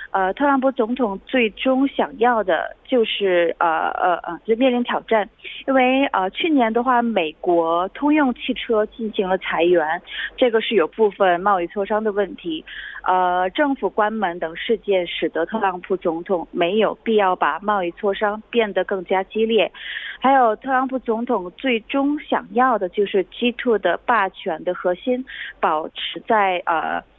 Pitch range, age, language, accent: 190-245 Hz, 30-49, Korean, Chinese